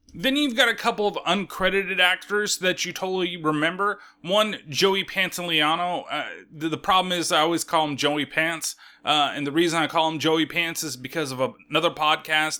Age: 20-39